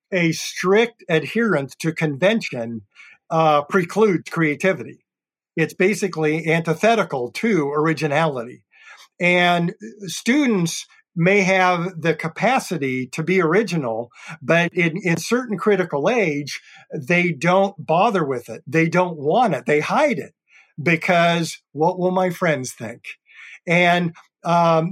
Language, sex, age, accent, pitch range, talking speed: English, male, 50-69, American, 155-190 Hz, 115 wpm